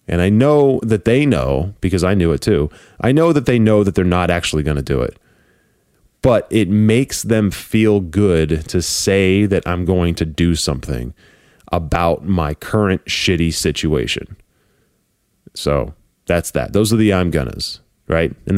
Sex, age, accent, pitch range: male, 30-49, American, 80-105 Hz